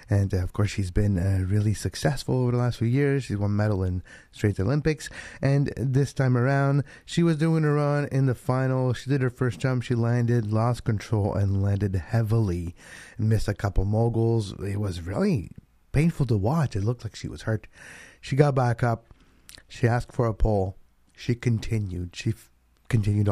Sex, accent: male, American